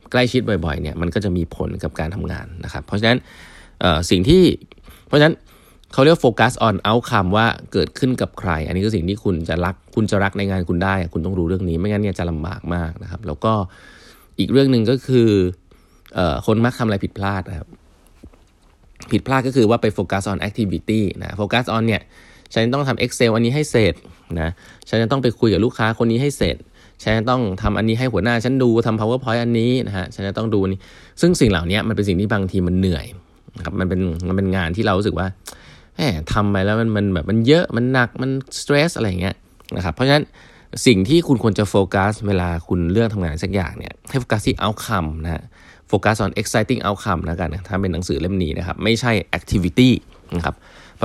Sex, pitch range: male, 90-115 Hz